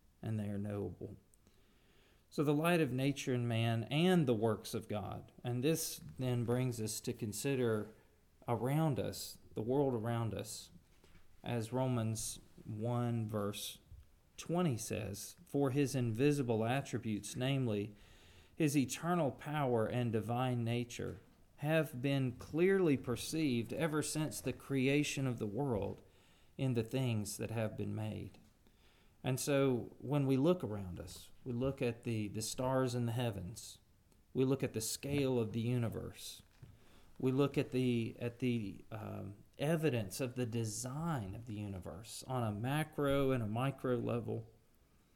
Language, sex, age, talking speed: English, male, 40-59, 145 wpm